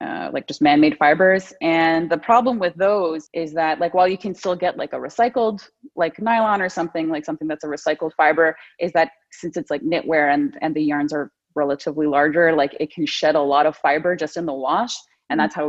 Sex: female